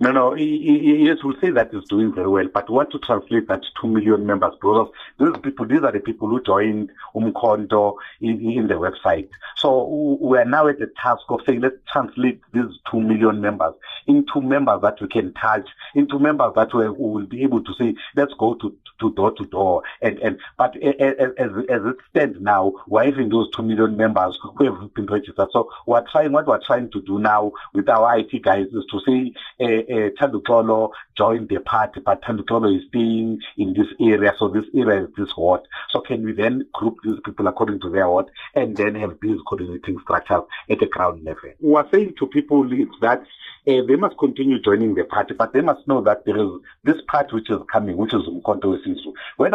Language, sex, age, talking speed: English, male, 50-69, 215 wpm